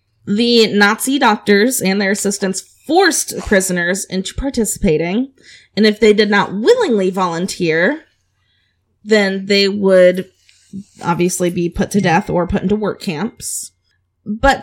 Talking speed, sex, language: 125 wpm, female, English